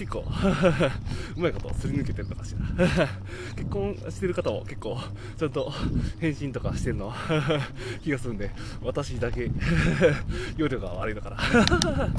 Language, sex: Japanese, male